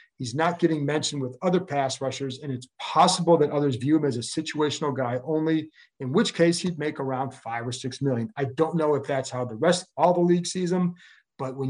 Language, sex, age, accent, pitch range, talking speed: English, male, 40-59, American, 130-170 Hz, 230 wpm